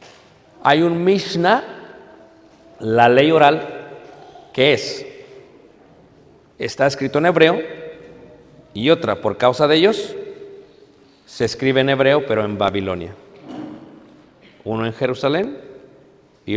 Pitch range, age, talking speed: 115-155 Hz, 50-69, 105 wpm